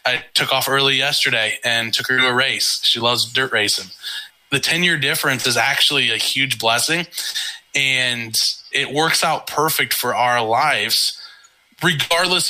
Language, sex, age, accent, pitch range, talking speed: English, male, 20-39, American, 120-135 Hz, 155 wpm